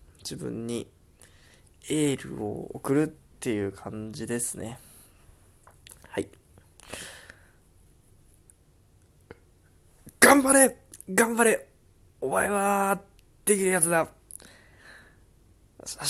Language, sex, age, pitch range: Japanese, male, 20-39, 100-135 Hz